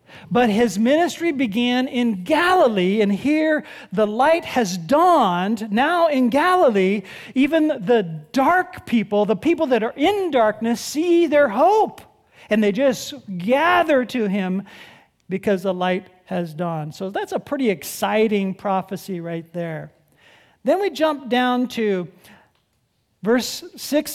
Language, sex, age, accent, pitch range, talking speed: English, male, 40-59, American, 195-275 Hz, 135 wpm